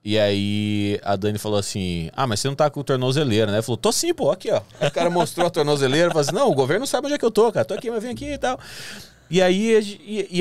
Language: English